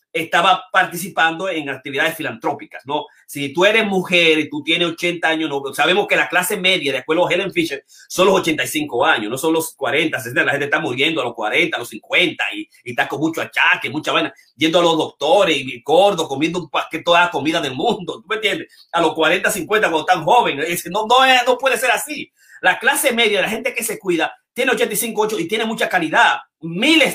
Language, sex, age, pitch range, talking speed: Spanish, male, 30-49, 165-210 Hz, 225 wpm